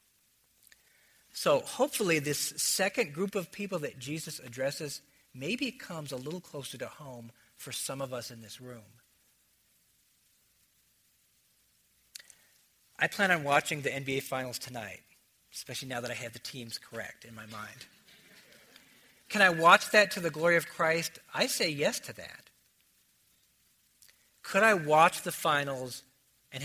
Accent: American